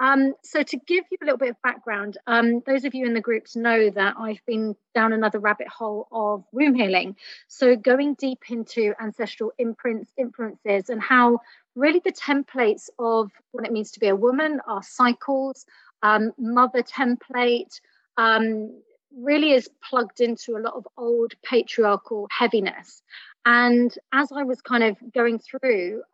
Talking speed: 165 wpm